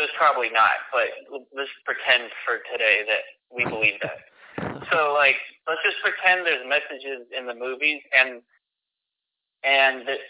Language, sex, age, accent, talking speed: English, male, 30-49, American, 145 wpm